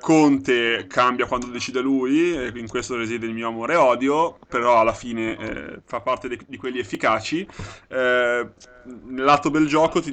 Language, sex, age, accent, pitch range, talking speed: Italian, male, 20-39, native, 125-150 Hz, 165 wpm